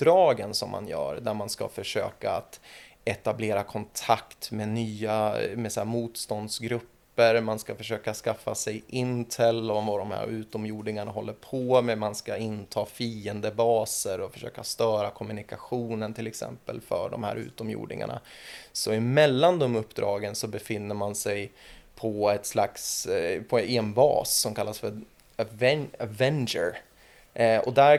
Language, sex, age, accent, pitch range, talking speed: Swedish, male, 20-39, native, 110-120 Hz, 135 wpm